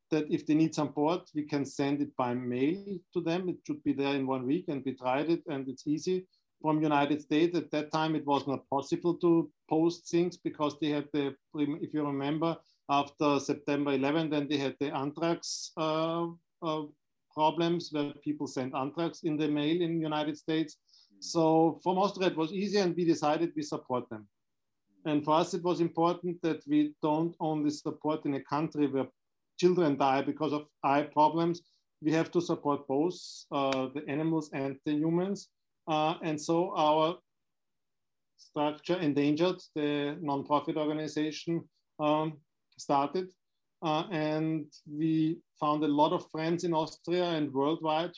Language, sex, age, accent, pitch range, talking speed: English, male, 50-69, German, 145-165 Hz, 170 wpm